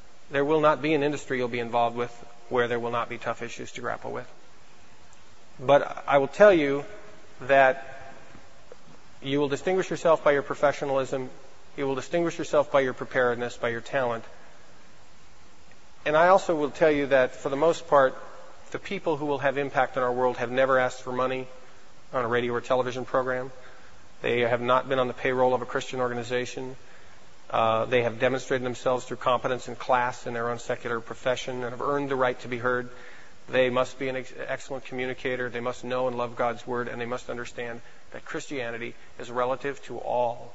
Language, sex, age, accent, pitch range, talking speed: English, male, 40-59, American, 125-140 Hz, 190 wpm